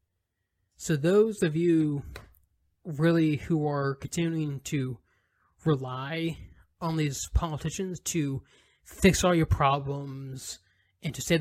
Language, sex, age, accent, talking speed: English, male, 20-39, American, 110 wpm